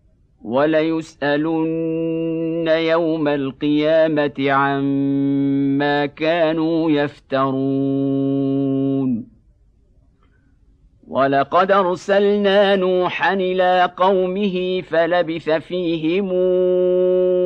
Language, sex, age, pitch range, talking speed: Arabic, male, 50-69, 155-185 Hz, 45 wpm